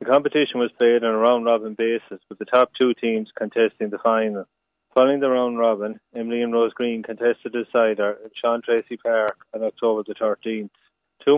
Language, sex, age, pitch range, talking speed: English, male, 30-49, 110-125 Hz, 195 wpm